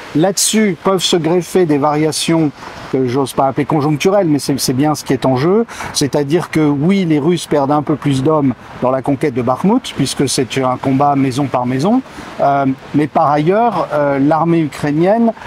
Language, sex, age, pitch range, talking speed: French, male, 50-69, 130-170 Hz, 190 wpm